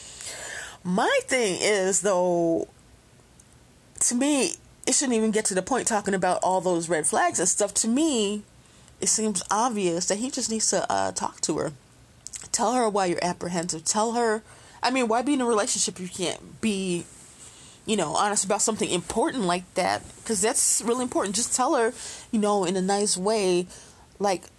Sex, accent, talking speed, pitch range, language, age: female, American, 180 wpm, 175-220 Hz, English, 20-39